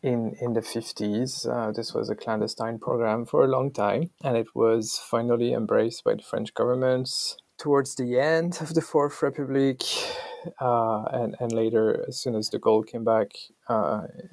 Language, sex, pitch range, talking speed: English, male, 115-140 Hz, 175 wpm